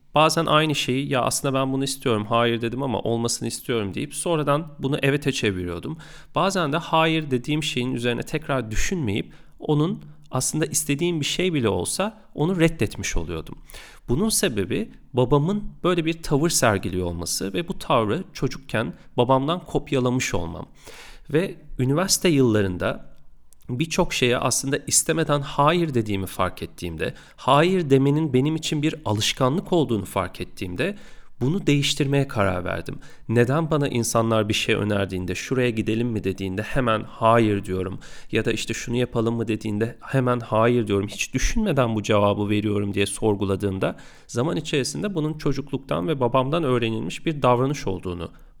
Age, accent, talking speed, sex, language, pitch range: 40-59, native, 140 wpm, male, Turkish, 110-155 Hz